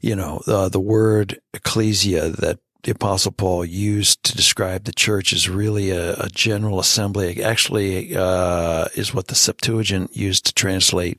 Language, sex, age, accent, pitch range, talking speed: English, male, 60-79, American, 95-120 Hz, 170 wpm